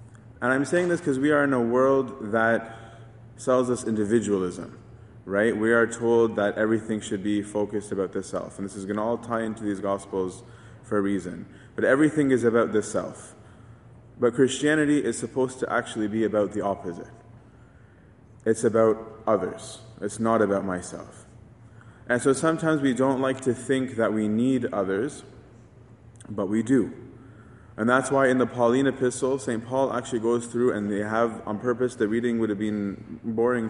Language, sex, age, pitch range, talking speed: English, male, 20-39, 105-125 Hz, 180 wpm